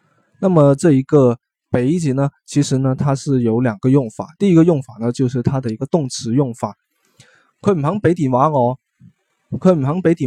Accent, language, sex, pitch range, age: native, Chinese, male, 120-150 Hz, 20-39